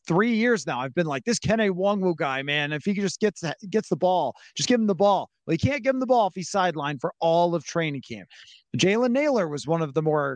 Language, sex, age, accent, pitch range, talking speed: English, male, 30-49, American, 145-195 Hz, 270 wpm